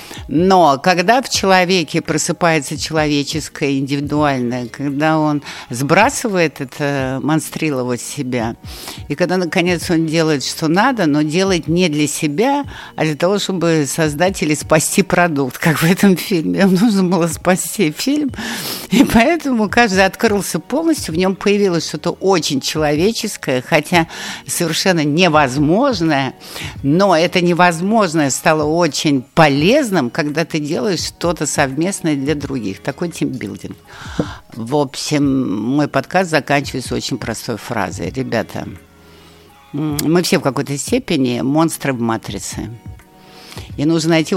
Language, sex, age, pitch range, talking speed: Russian, female, 60-79, 135-180 Hz, 125 wpm